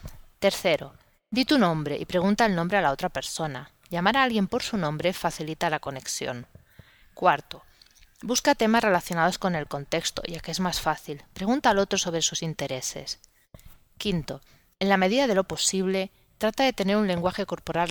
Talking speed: 175 wpm